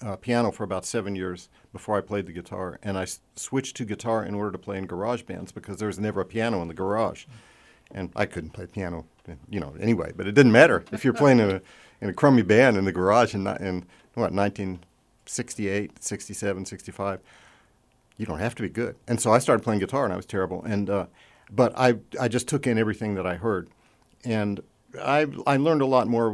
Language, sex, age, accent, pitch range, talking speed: English, male, 50-69, American, 95-115 Hz, 225 wpm